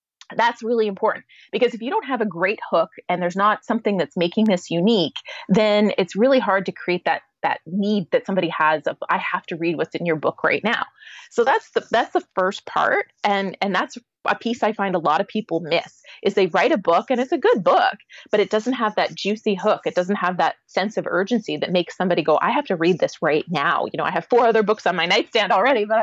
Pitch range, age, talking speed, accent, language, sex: 180-235 Hz, 30-49, 250 wpm, American, English, female